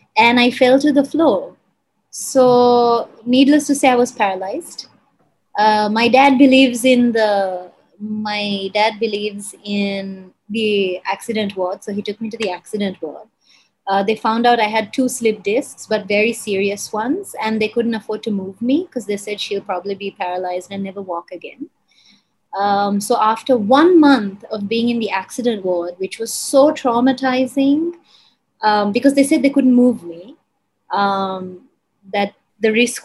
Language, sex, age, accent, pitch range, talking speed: English, female, 20-39, Indian, 200-250 Hz, 165 wpm